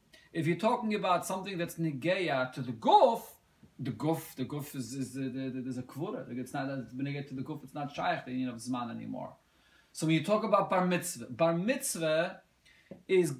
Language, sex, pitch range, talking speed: English, male, 135-175 Hz, 200 wpm